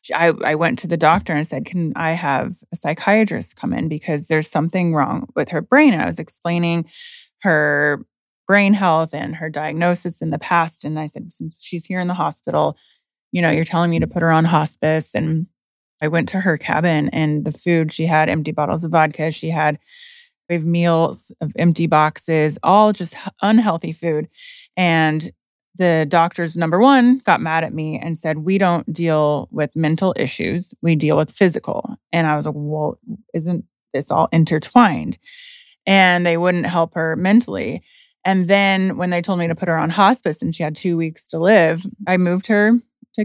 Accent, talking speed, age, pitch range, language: American, 190 wpm, 20-39, 160-195 Hz, English